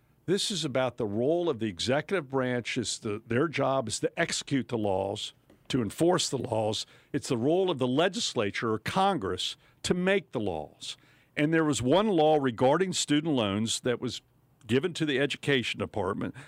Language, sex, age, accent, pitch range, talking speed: English, male, 50-69, American, 120-160 Hz, 170 wpm